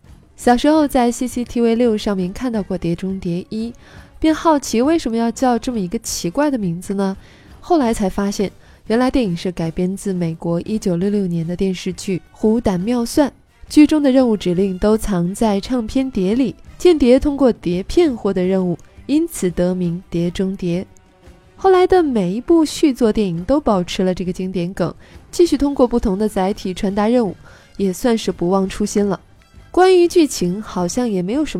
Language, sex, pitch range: Chinese, female, 185-260 Hz